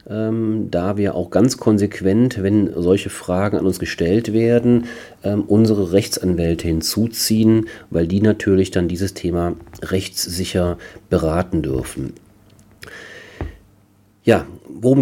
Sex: male